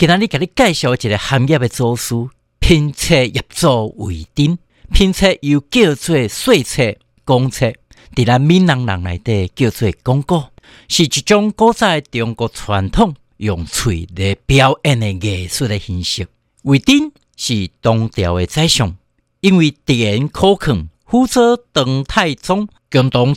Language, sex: Chinese, male